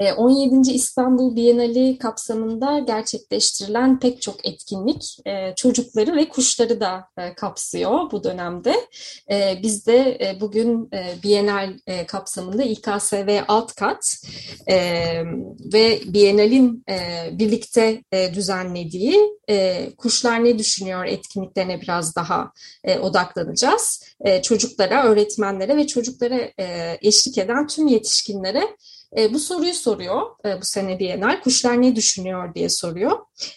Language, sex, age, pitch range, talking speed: Turkish, female, 30-49, 195-255 Hz, 95 wpm